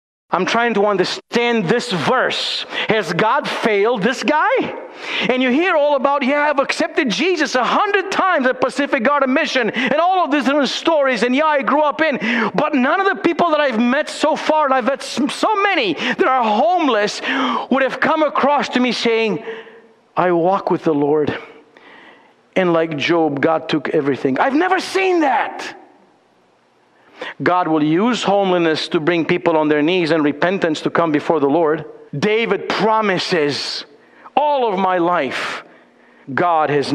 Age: 50-69